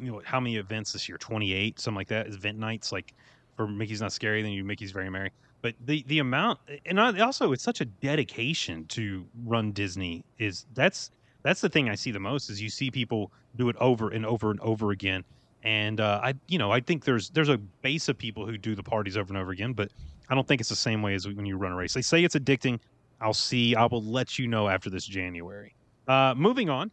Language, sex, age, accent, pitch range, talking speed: English, male, 30-49, American, 105-130 Hz, 245 wpm